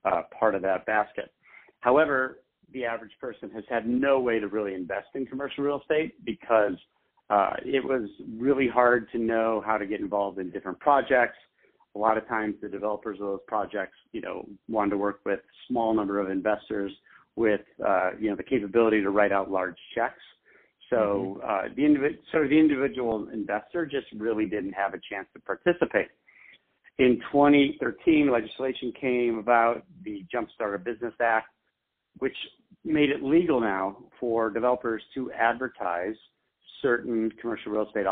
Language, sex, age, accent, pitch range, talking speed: English, male, 50-69, American, 100-130 Hz, 165 wpm